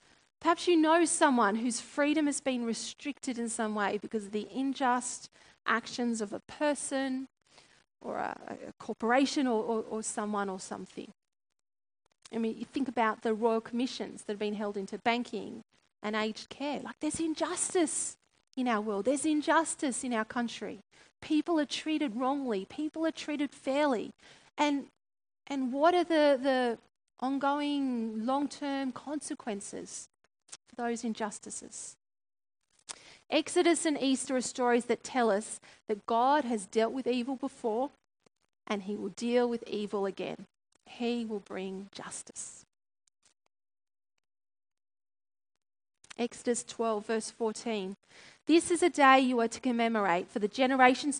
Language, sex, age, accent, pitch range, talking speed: English, female, 40-59, Australian, 220-280 Hz, 140 wpm